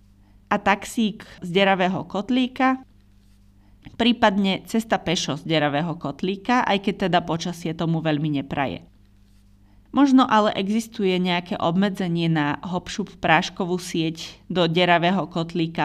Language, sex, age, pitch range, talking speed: Slovak, female, 30-49, 145-195 Hz, 115 wpm